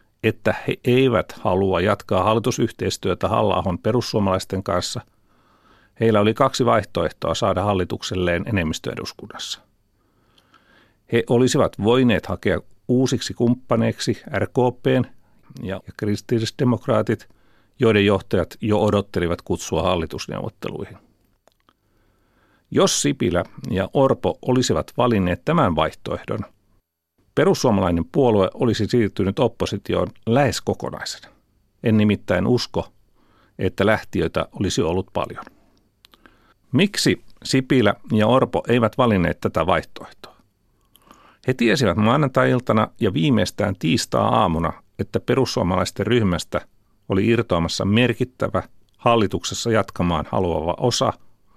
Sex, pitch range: male, 95-120 Hz